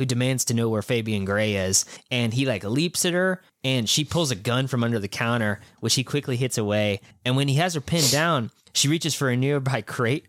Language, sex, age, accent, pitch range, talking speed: English, male, 20-39, American, 105-135 Hz, 240 wpm